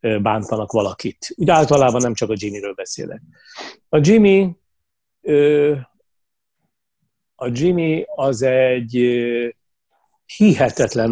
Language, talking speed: Hungarian, 85 wpm